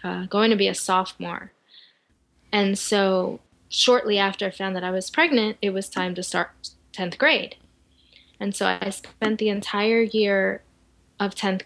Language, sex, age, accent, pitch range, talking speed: English, female, 10-29, American, 185-210 Hz, 165 wpm